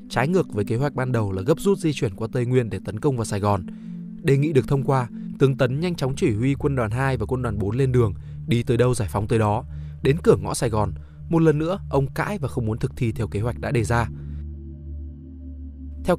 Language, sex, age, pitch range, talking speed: Vietnamese, male, 20-39, 100-145 Hz, 260 wpm